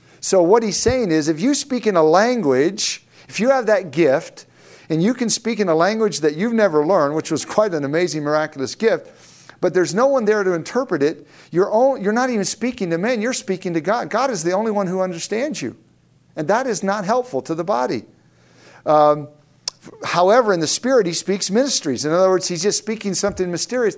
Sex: male